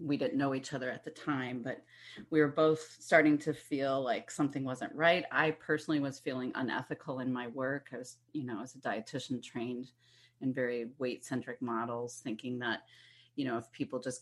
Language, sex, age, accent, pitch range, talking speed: English, female, 40-59, American, 130-150 Hz, 200 wpm